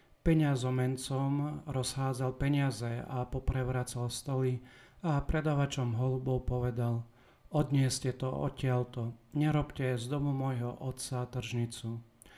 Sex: male